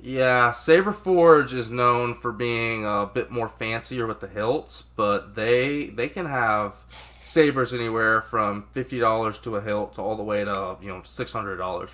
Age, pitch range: 20-39, 100-120 Hz